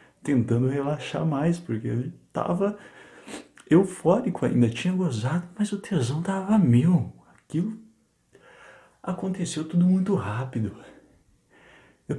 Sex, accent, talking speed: male, Brazilian, 105 wpm